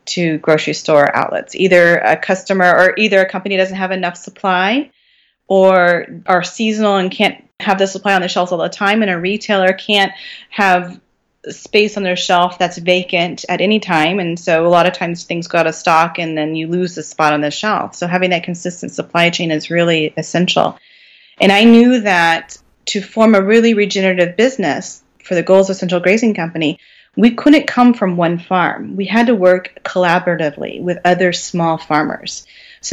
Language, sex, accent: English, female, American